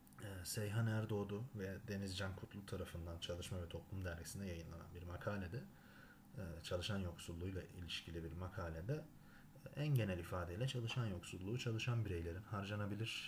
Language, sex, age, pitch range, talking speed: Turkish, male, 30-49, 90-110 Hz, 120 wpm